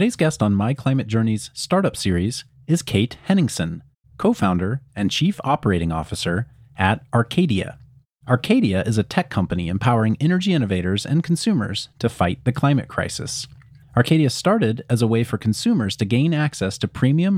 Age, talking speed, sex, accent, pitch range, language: 30-49, 155 wpm, male, American, 110-145 Hz, English